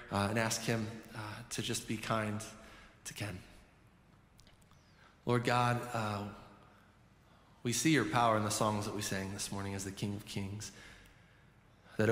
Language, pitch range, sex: English, 100-115 Hz, male